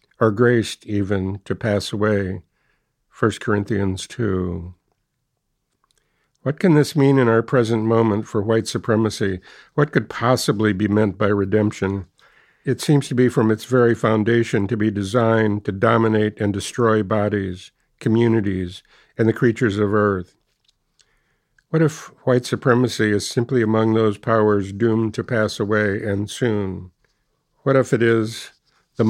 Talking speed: 140 wpm